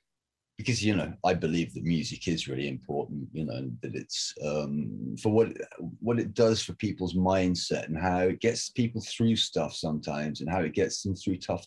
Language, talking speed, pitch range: English, 195 wpm, 85-110 Hz